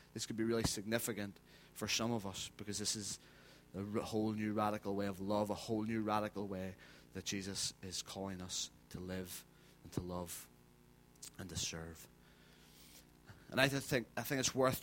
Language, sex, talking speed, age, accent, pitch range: English, male, 180 wpm, 30-49, British, 90-115 Hz